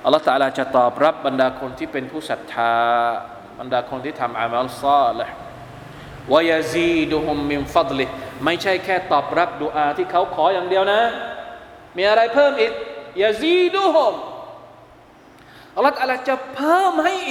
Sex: male